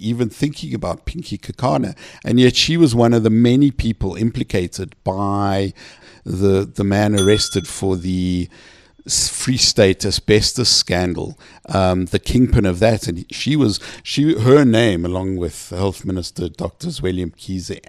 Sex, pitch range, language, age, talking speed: male, 95-120 Hz, English, 60-79, 150 wpm